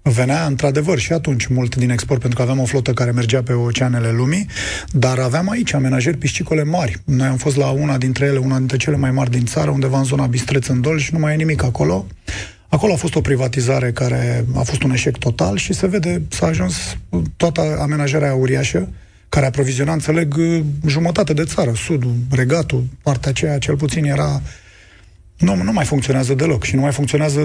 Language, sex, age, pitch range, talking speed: Romanian, male, 30-49, 125-155 Hz, 195 wpm